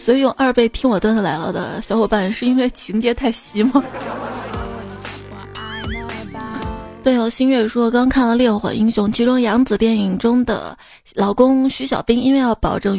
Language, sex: Chinese, female